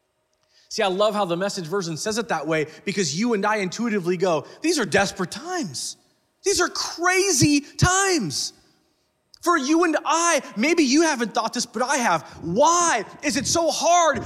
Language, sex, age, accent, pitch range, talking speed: English, male, 30-49, American, 180-260 Hz, 175 wpm